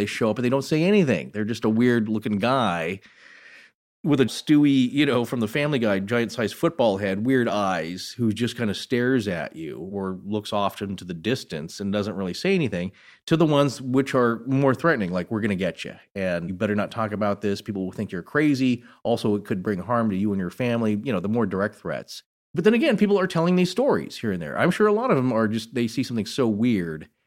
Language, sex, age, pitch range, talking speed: English, male, 30-49, 100-130 Hz, 245 wpm